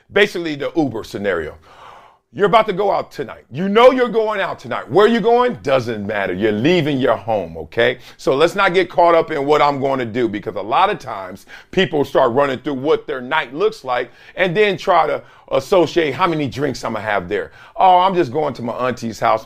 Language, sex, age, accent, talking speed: English, male, 40-59, American, 230 wpm